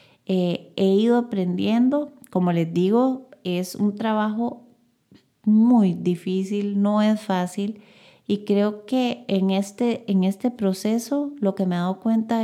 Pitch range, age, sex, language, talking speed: 180-215 Hz, 30-49, female, Spanish, 135 wpm